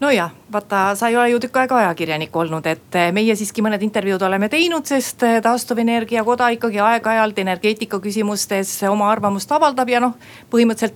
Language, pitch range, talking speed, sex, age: Finnish, 180-230 Hz, 165 wpm, female, 40-59